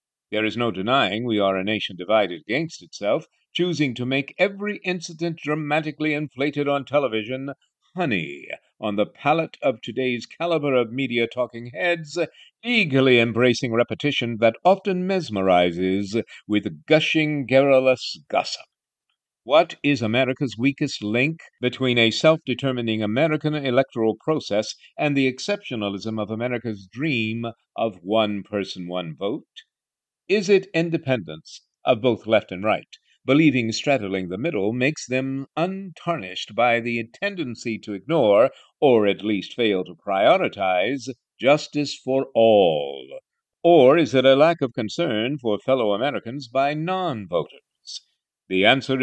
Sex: male